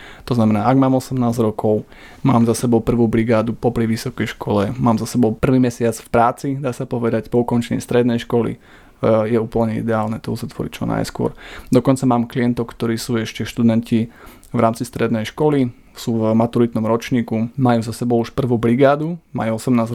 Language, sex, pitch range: Slovak, male, 115-125 Hz